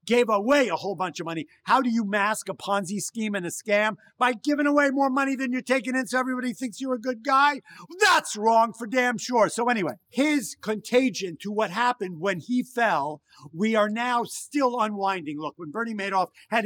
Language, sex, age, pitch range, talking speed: English, male, 50-69, 195-240 Hz, 210 wpm